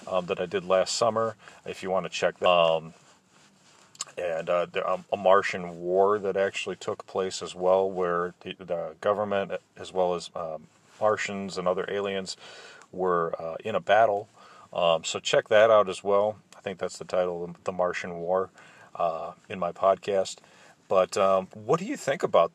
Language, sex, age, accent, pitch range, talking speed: English, male, 40-59, American, 90-100 Hz, 190 wpm